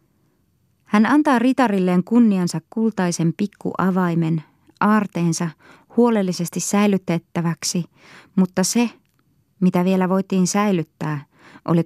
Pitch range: 165-205 Hz